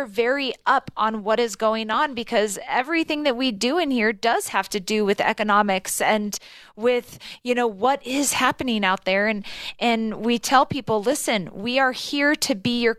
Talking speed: 190 wpm